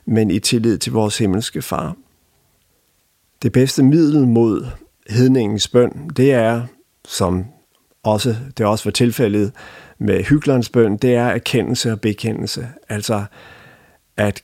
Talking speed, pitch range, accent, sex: 130 wpm, 110-125 Hz, Danish, male